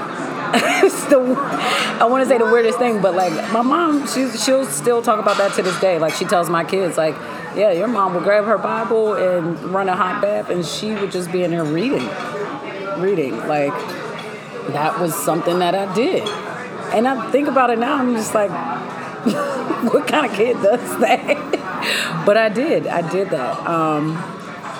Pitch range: 165-215 Hz